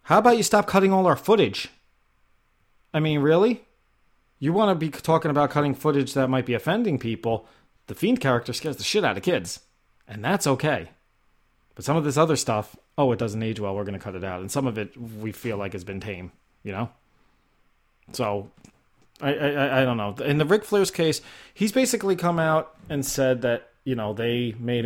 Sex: male